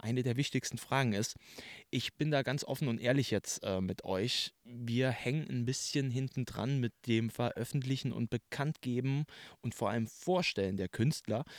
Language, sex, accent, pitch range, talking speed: German, male, German, 115-140 Hz, 170 wpm